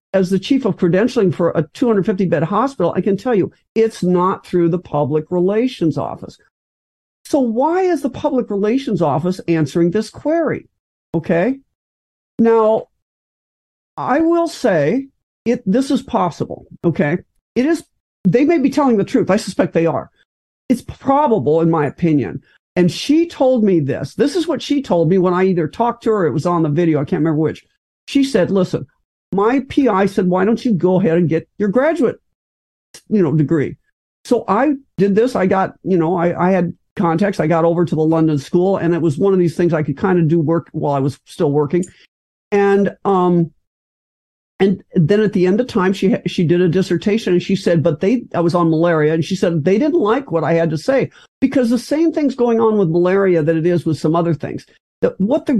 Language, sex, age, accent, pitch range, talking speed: English, male, 50-69, American, 170-230 Hz, 205 wpm